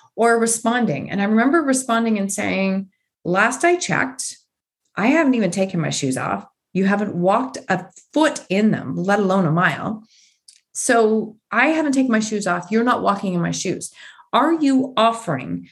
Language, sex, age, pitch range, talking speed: English, female, 30-49, 185-240 Hz, 170 wpm